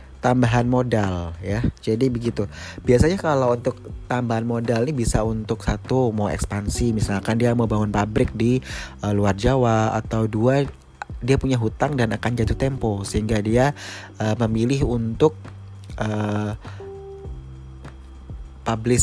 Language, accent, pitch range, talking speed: Indonesian, native, 100-125 Hz, 130 wpm